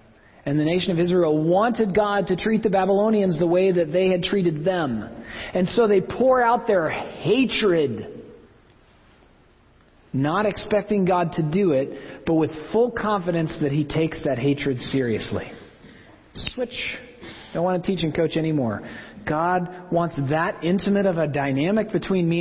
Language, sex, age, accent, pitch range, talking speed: English, male, 40-59, American, 150-205 Hz, 160 wpm